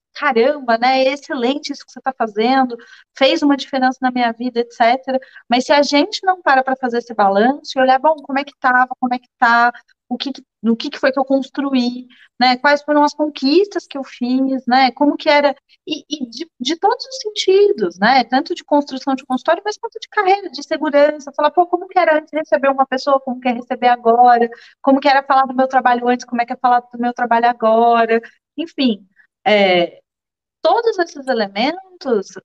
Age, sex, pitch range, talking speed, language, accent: 30-49, female, 245-320 Hz, 205 wpm, Portuguese, Brazilian